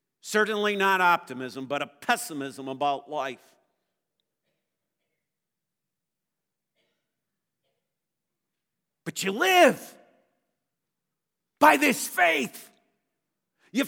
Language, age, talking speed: English, 50-69, 65 wpm